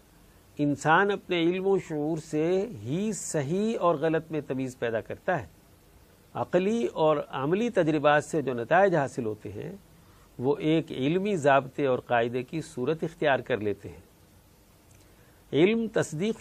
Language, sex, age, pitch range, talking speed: Urdu, male, 50-69, 115-165 Hz, 145 wpm